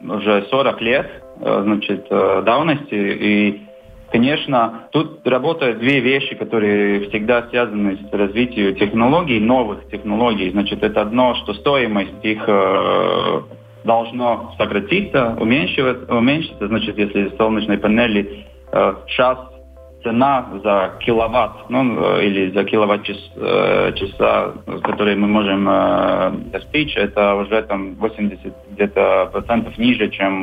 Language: Russian